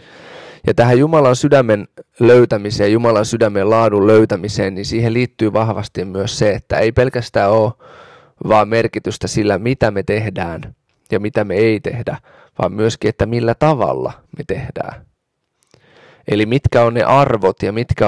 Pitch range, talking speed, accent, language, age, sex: 105-125 Hz, 145 wpm, native, Finnish, 20-39, male